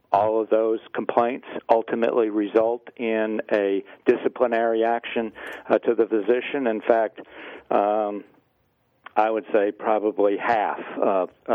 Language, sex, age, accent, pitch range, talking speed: English, male, 50-69, American, 105-125 Hz, 120 wpm